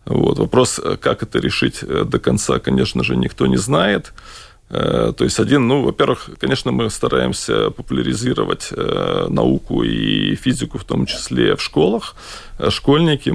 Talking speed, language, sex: 115 wpm, Russian, male